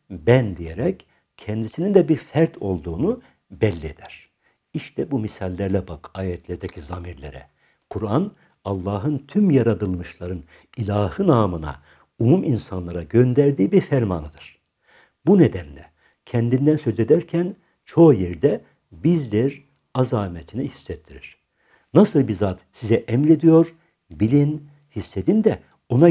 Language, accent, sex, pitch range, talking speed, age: Turkish, native, male, 85-140 Hz, 105 wpm, 60-79